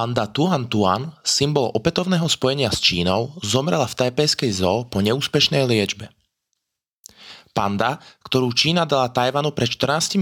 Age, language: 20-39, Slovak